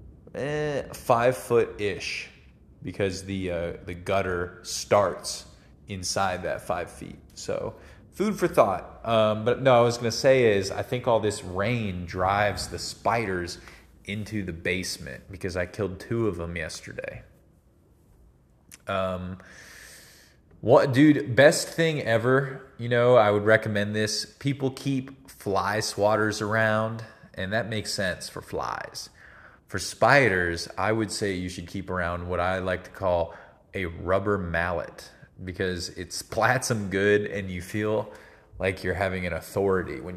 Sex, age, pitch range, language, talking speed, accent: male, 20-39, 90-110 Hz, English, 150 wpm, American